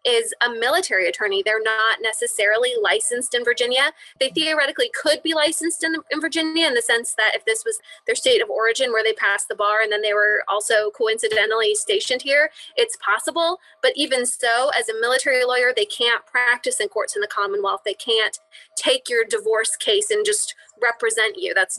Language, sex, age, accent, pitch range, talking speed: English, female, 20-39, American, 235-360 Hz, 195 wpm